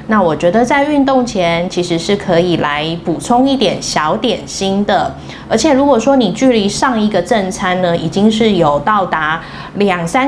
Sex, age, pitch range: female, 20-39, 180-245 Hz